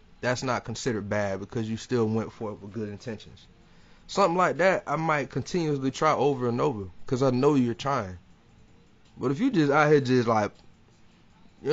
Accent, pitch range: American, 105-140 Hz